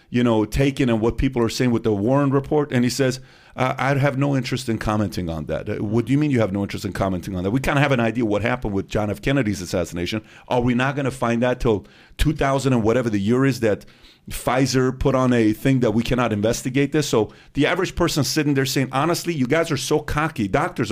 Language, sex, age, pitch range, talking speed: English, male, 40-59, 110-140 Hz, 250 wpm